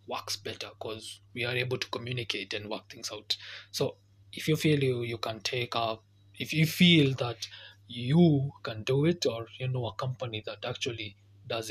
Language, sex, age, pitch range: English, male, 20-39, 100-135 Hz